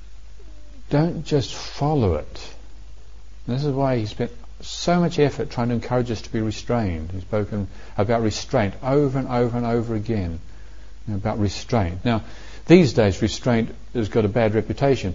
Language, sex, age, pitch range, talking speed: English, male, 50-69, 95-125 Hz, 160 wpm